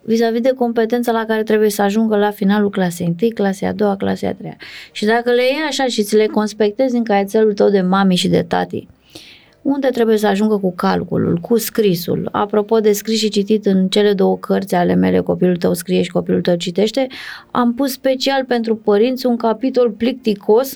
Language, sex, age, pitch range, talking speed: Romanian, female, 20-39, 210-260 Hz, 200 wpm